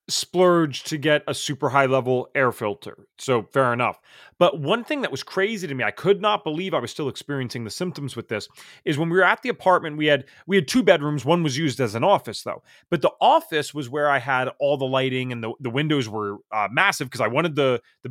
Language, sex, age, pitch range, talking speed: English, male, 30-49, 120-160 Hz, 245 wpm